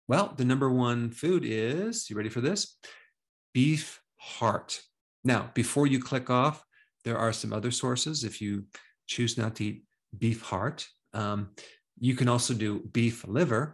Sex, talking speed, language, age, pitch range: male, 160 wpm, English, 40-59, 110-130 Hz